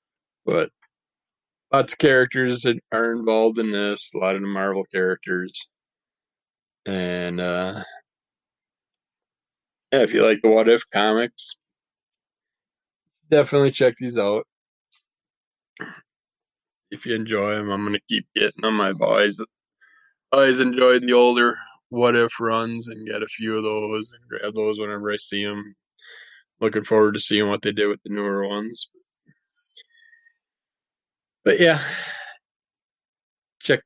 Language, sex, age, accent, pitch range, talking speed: English, male, 20-39, American, 105-125 Hz, 130 wpm